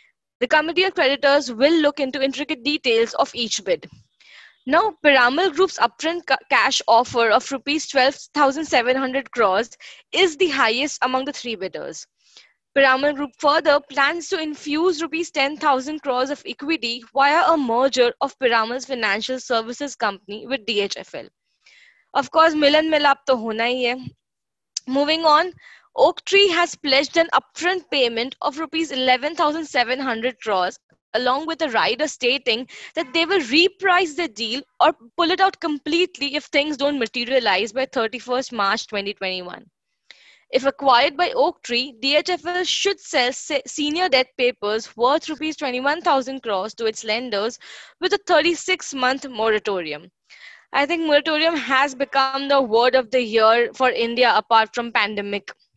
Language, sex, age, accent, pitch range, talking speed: English, female, 20-39, Indian, 245-310 Hz, 140 wpm